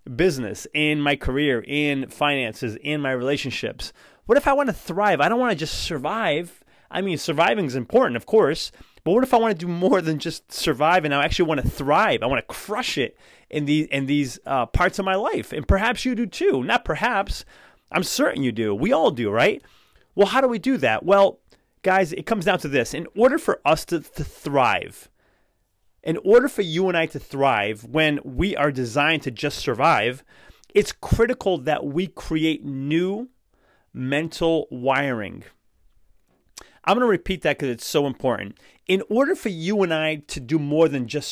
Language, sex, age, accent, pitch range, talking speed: English, male, 30-49, American, 140-195 Hz, 200 wpm